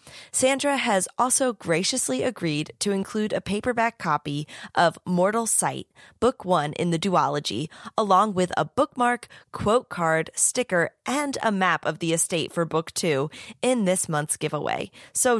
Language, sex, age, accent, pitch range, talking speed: English, female, 20-39, American, 160-220 Hz, 150 wpm